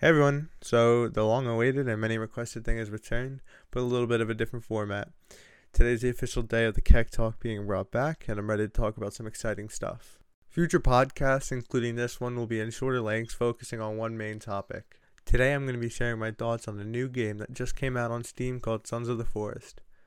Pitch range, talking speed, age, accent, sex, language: 110-125 Hz, 225 wpm, 20-39, American, male, English